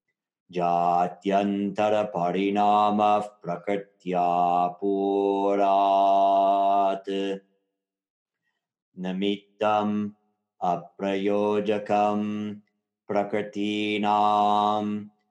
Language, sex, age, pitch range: English, male, 30-49, 100-105 Hz